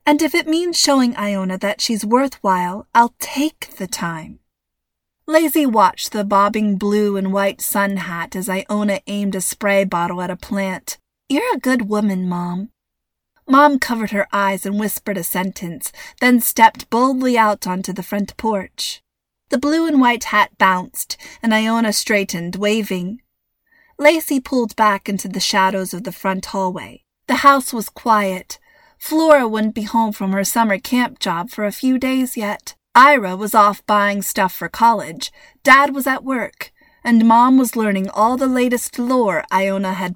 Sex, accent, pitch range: female, American, 195-260 Hz